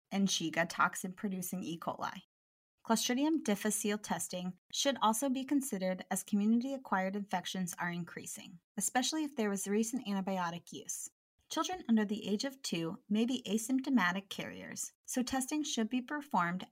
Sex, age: female, 30-49